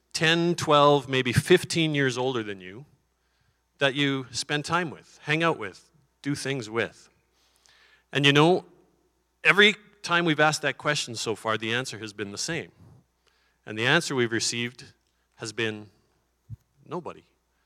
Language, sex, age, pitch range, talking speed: English, male, 40-59, 120-150 Hz, 150 wpm